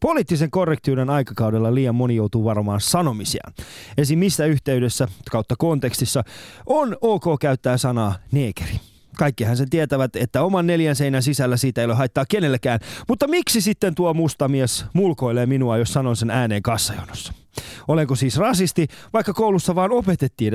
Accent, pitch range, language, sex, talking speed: native, 120-170 Hz, Finnish, male, 150 wpm